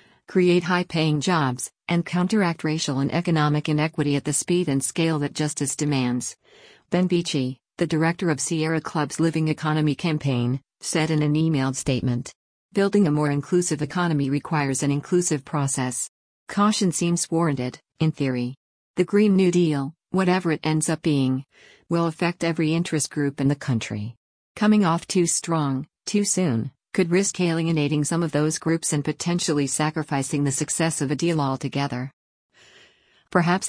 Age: 50-69